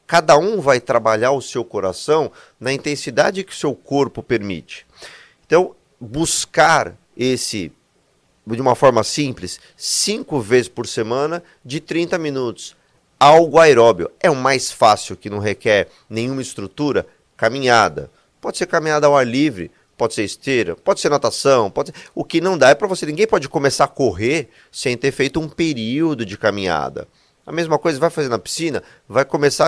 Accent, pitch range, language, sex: Brazilian, 115-165 Hz, Portuguese, male